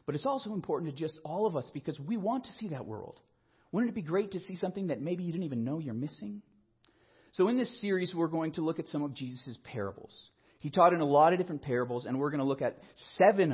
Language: English